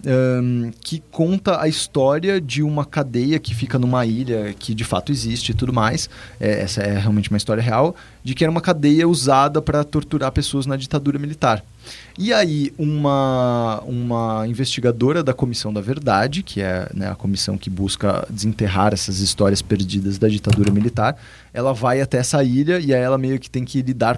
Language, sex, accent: Portuguese, male, Brazilian